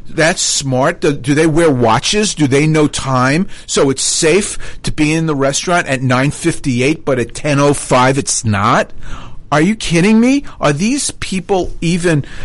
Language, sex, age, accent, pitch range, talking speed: English, male, 50-69, American, 120-160 Hz, 165 wpm